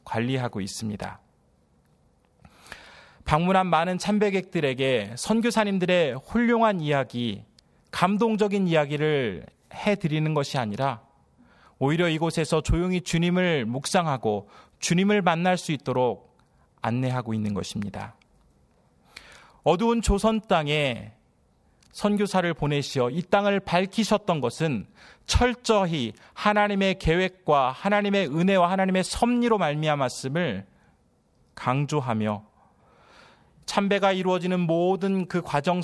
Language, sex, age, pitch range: Korean, male, 30-49, 115-185 Hz